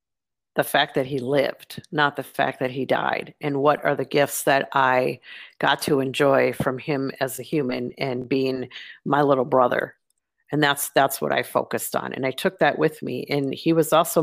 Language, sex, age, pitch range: English, female, 40-59, 130-150 Hz